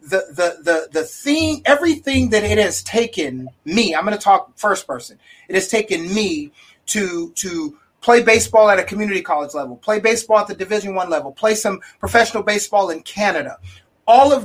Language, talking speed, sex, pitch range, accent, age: English, 185 wpm, male, 190-260 Hz, American, 30-49